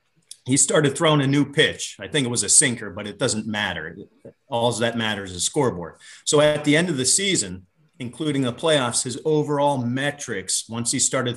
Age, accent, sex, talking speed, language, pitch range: 40-59, American, male, 195 wpm, English, 115-145 Hz